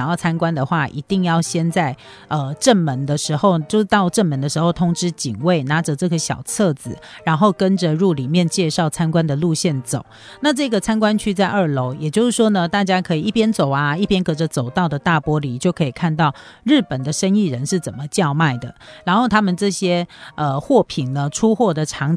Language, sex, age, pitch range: Chinese, female, 40-59, 145-195 Hz